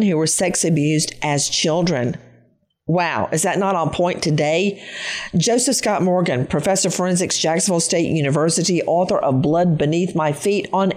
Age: 50-69